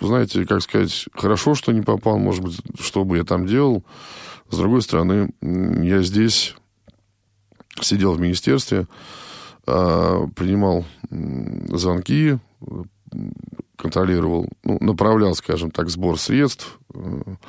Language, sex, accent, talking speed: Russian, male, native, 105 wpm